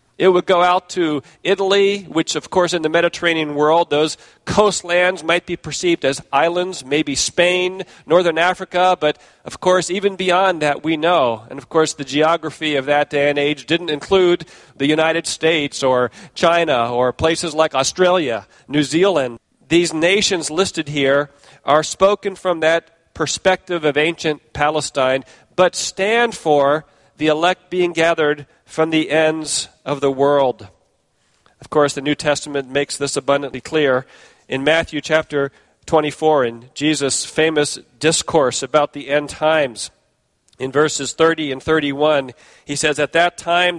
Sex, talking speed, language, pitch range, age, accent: male, 150 wpm, English, 145-180 Hz, 40-59, American